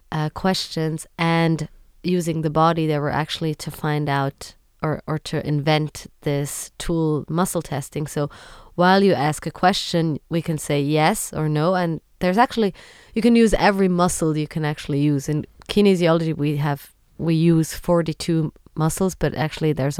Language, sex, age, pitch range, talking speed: English, female, 20-39, 150-175 Hz, 165 wpm